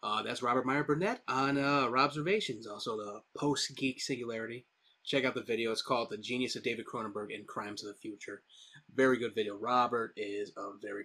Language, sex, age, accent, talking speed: English, male, 30-49, American, 190 wpm